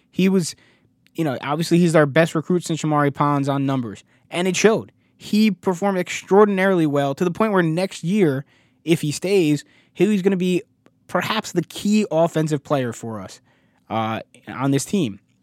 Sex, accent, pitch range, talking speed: male, American, 130-165 Hz, 175 wpm